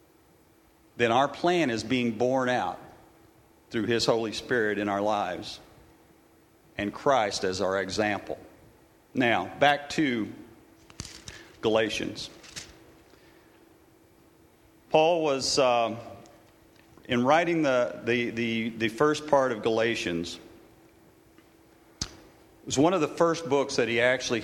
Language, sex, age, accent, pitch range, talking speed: English, male, 50-69, American, 110-135 Hz, 115 wpm